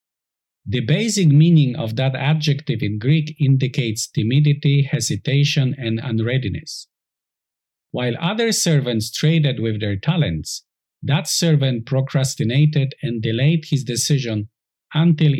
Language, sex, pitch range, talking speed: English, male, 120-150 Hz, 110 wpm